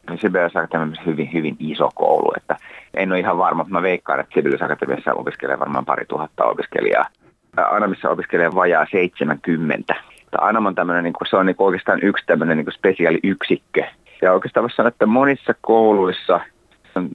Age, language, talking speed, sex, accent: 30-49, Finnish, 135 wpm, male, native